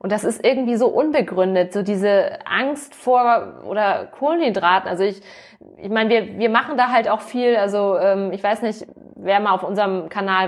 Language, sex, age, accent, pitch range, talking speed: German, female, 20-39, German, 190-230 Hz, 190 wpm